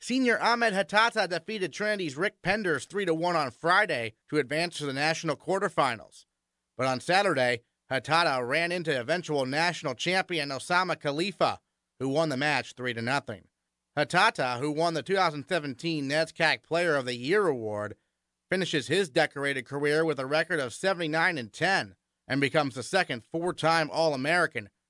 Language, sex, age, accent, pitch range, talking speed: English, male, 30-49, American, 135-185 Hz, 165 wpm